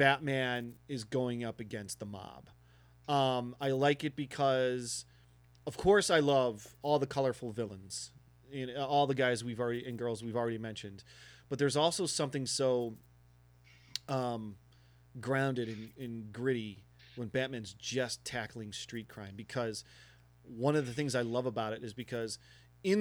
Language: English